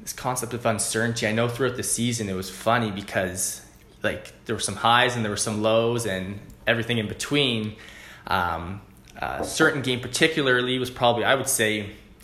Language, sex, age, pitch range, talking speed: English, male, 20-39, 105-135 Hz, 180 wpm